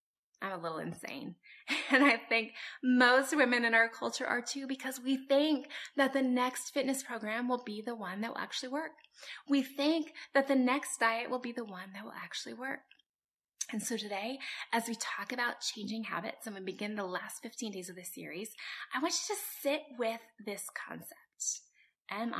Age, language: 20-39, English